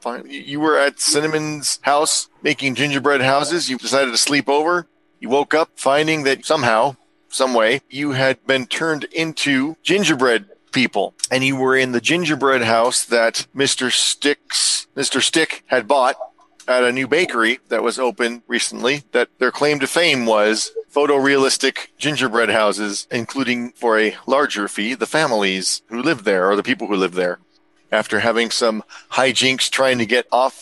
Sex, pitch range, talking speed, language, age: male, 115-145 Hz, 165 wpm, English, 40-59